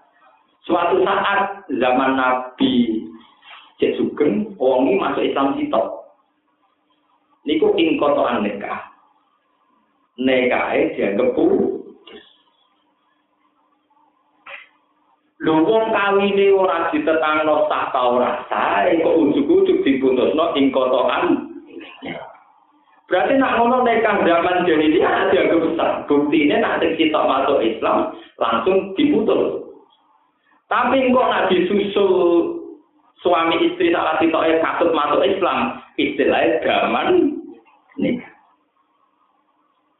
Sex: male